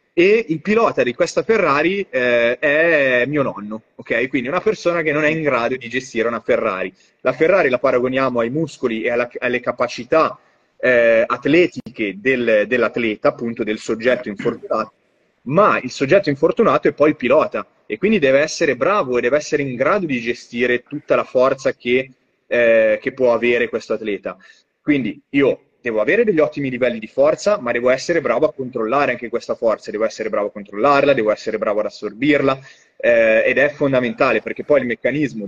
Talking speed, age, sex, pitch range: 180 wpm, 30-49, male, 120-150 Hz